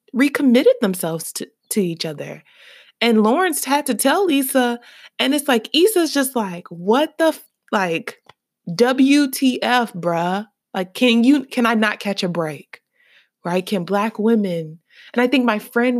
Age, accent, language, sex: 20-39, American, English, female